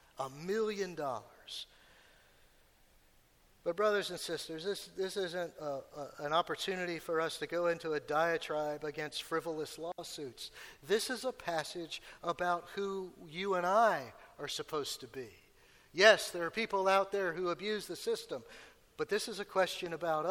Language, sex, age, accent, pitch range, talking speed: English, male, 50-69, American, 165-200 Hz, 150 wpm